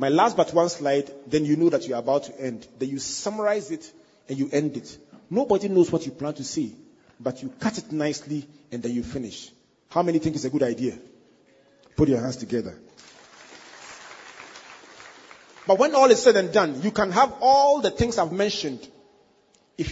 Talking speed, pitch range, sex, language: 195 wpm, 150-220 Hz, male, English